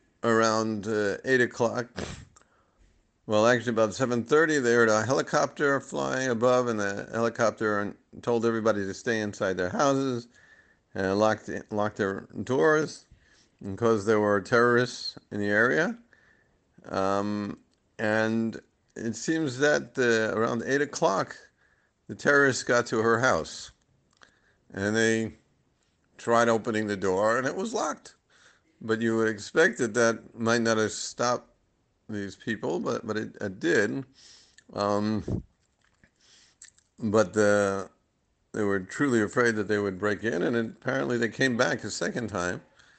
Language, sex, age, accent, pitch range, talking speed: English, male, 50-69, American, 105-120 Hz, 140 wpm